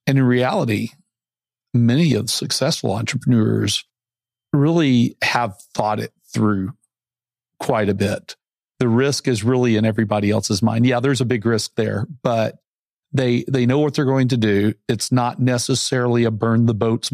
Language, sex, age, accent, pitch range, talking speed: English, male, 50-69, American, 110-125 Hz, 160 wpm